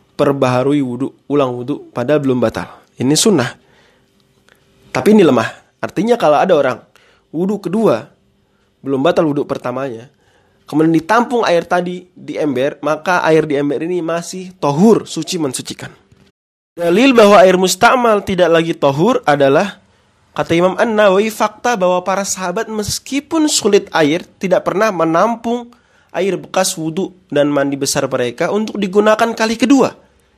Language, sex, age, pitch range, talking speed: Indonesian, male, 20-39, 145-210 Hz, 135 wpm